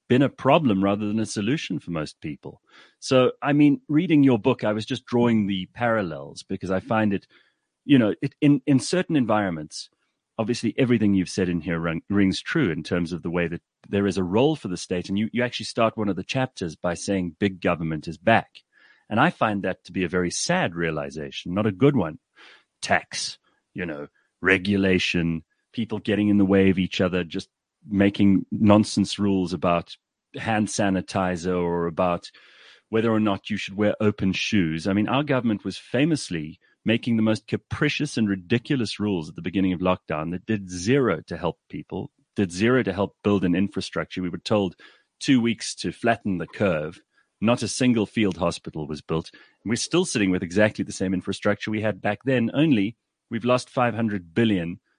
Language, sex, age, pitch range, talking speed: English, male, 30-49, 90-115 Hz, 190 wpm